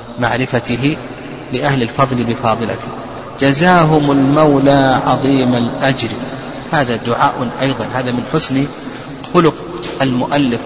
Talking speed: 90 wpm